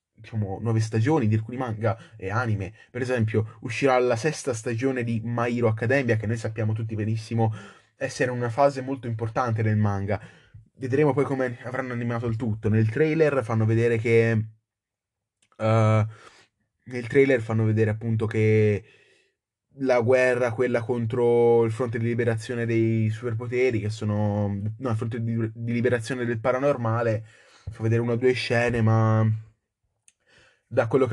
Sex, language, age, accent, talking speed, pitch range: male, Italian, 20-39, native, 150 wpm, 110-130 Hz